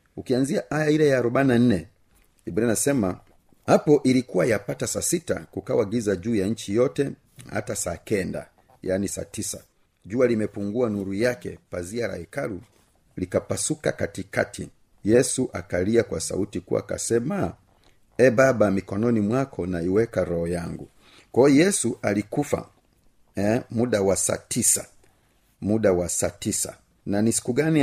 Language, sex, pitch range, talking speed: Swahili, male, 95-130 Hz, 130 wpm